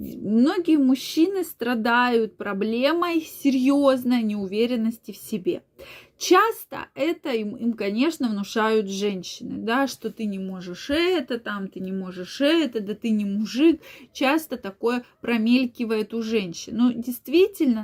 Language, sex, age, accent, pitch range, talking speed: Russian, female, 20-39, native, 205-260 Hz, 130 wpm